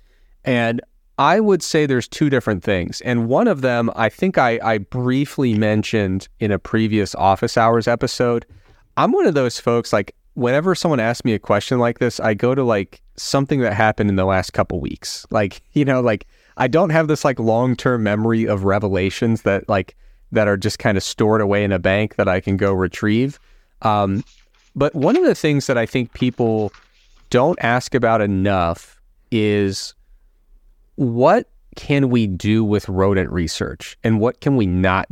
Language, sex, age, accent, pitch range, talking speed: English, male, 30-49, American, 100-130 Hz, 185 wpm